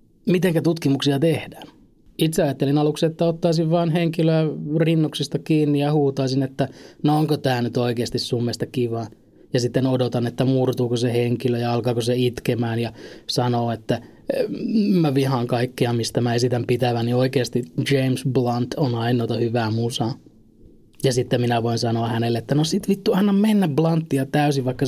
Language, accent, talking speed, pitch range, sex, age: Finnish, native, 160 wpm, 120-145 Hz, male, 20-39